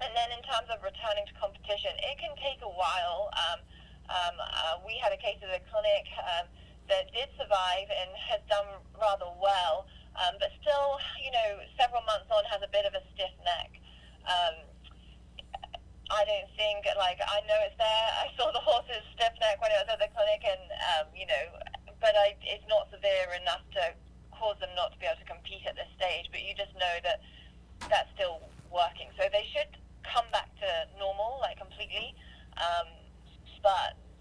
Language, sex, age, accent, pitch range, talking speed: English, female, 20-39, British, 185-305 Hz, 190 wpm